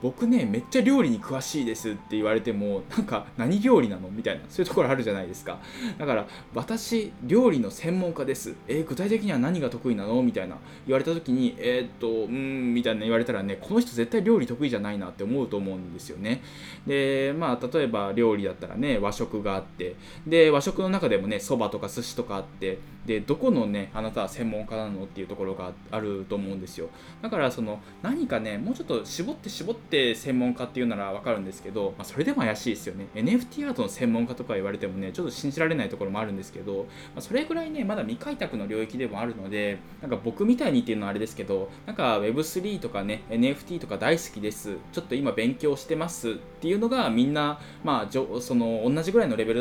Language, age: Japanese, 10-29